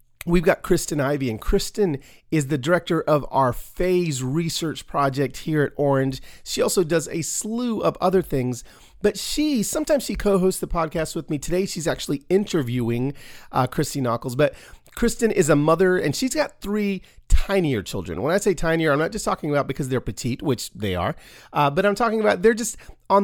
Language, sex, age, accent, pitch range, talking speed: English, male, 40-59, American, 130-190 Hz, 195 wpm